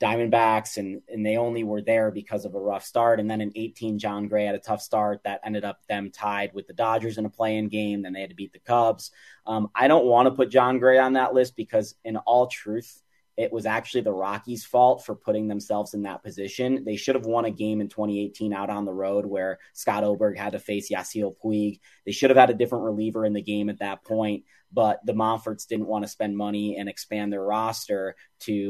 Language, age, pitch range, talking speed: English, 30-49, 100-120 Hz, 240 wpm